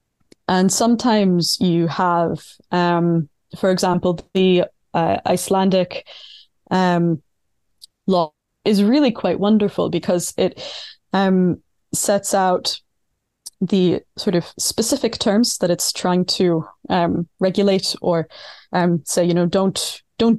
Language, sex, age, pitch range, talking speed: English, female, 20-39, 175-200 Hz, 115 wpm